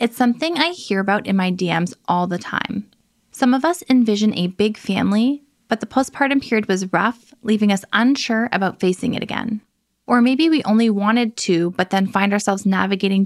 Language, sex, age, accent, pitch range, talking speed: English, female, 20-39, American, 195-235 Hz, 190 wpm